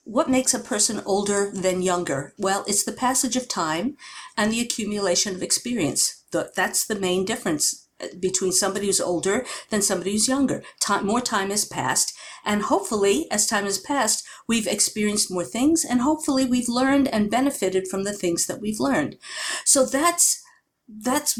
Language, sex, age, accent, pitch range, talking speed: English, female, 50-69, American, 185-255 Hz, 170 wpm